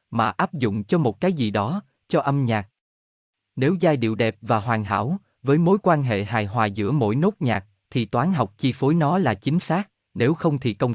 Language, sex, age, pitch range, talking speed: Vietnamese, male, 20-39, 110-160 Hz, 225 wpm